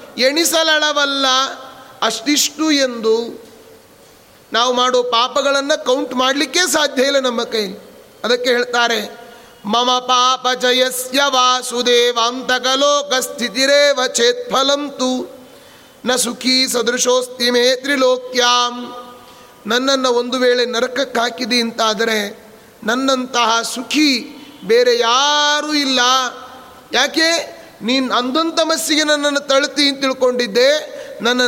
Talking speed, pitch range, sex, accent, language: 60 wpm, 240-275 Hz, male, native, Kannada